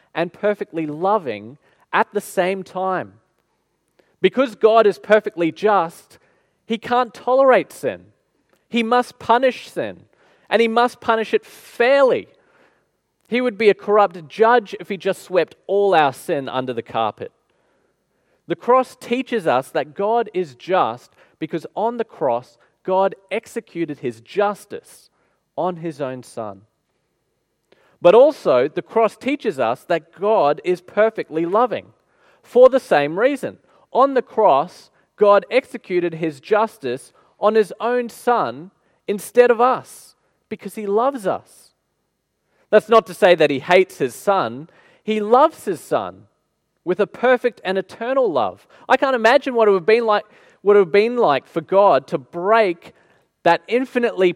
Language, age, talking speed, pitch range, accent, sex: English, 30-49, 145 wpm, 175-240 Hz, Australian, male